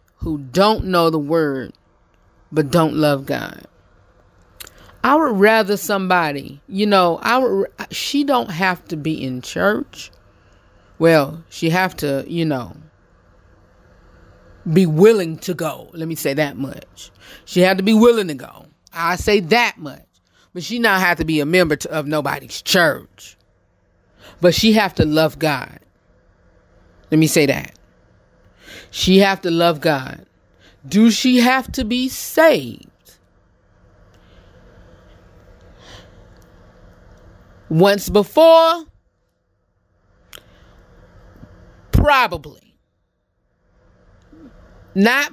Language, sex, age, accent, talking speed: English, female, 30-49, American, 115 wpm